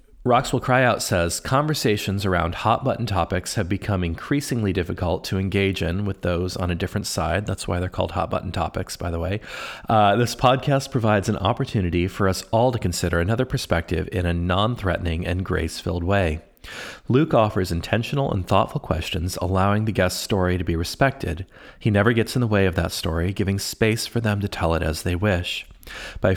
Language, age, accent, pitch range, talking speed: English, 40-59, American, 90-115 Hz, 195 wpm